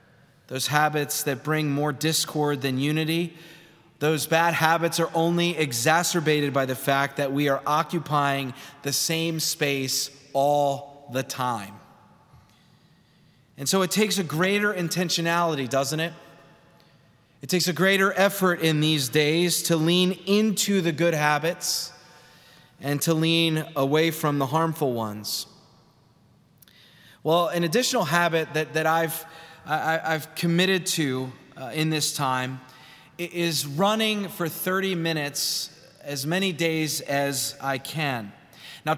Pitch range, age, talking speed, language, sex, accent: 145-170 Hz, 30-49, 130 wpm, English, male, American